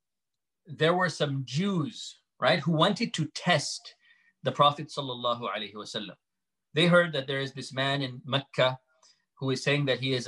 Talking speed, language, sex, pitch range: 170 wpm, English, male, 135-170 Hz